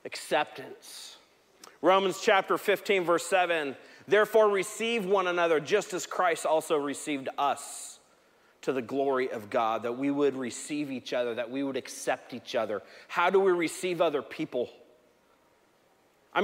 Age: 30-49